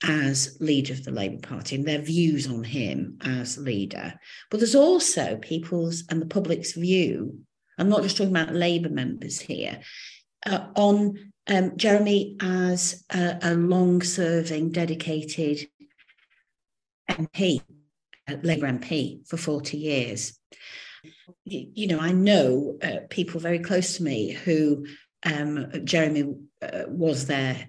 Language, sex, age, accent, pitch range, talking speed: English, female, 50-69, British, 145-180 Hz, 130 wpm